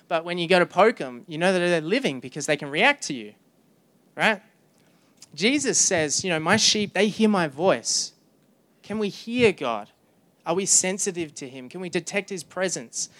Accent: Australian